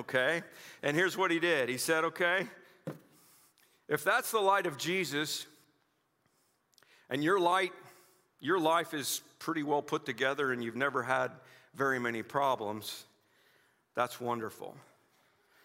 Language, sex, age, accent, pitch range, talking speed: English, male, 50-69, American, 120-170 Hz, 130 wpm